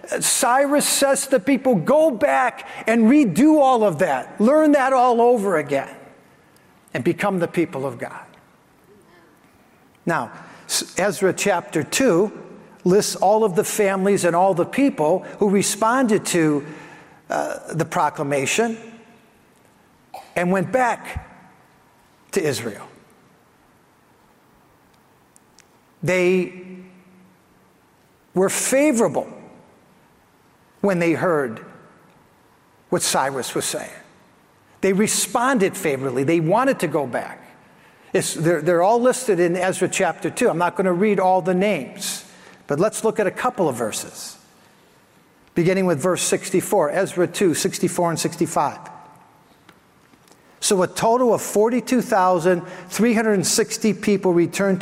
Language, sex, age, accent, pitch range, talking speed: English, male, 50-69, American, 180-225 Hz, 115 wpm